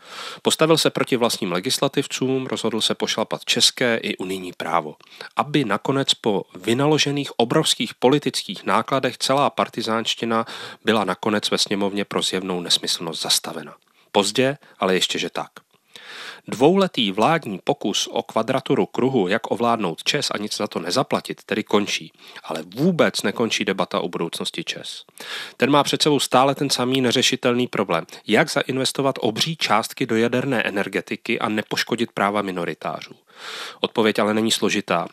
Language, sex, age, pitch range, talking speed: Czech, male, 40-59, 105-140 Hz, 140 wpm